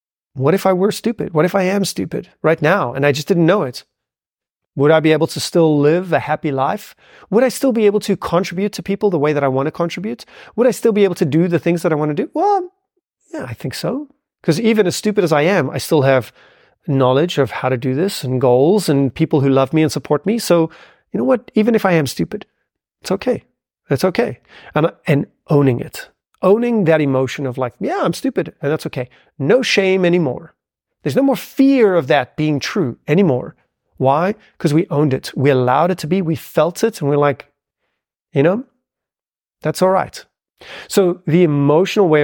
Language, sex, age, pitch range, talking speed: English, male, 30-49, 145-200 Hz, 220 wpm